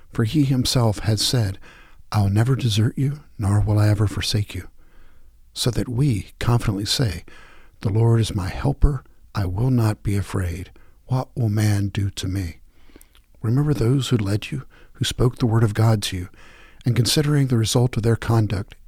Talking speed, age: 180 wpm, 50-69